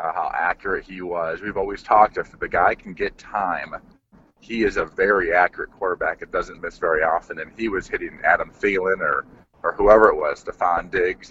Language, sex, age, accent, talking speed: English, male, 30-49, American, 200 wpm